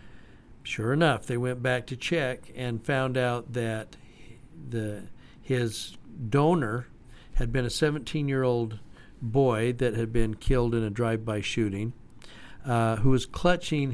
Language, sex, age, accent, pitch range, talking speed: English, male, 60-79, American, 115-140 Hz, 135 wpm